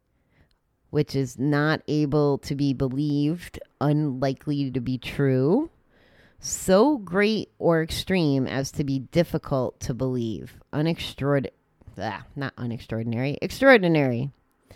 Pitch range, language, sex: 125-155 Hz, English, female